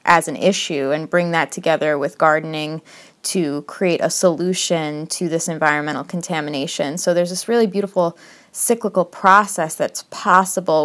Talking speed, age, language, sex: 145 wpm, 20-39, English, female